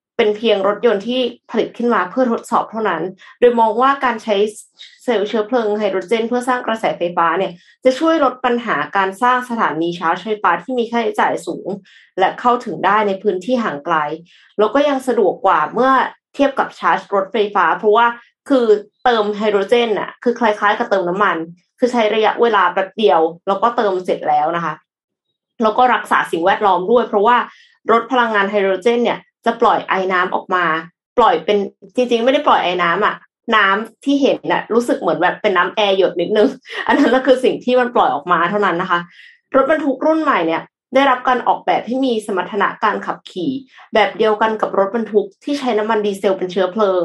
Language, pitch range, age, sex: Thai, 190-245 Hz, 20-39, female